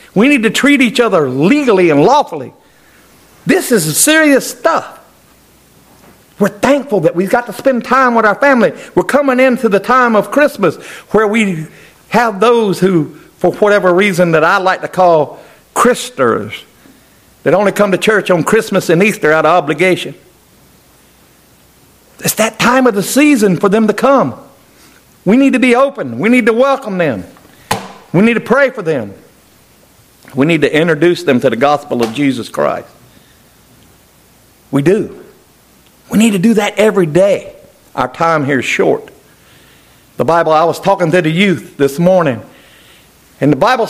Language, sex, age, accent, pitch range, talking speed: English, male, 50-69, American, 165-235 Hz, 165 wpm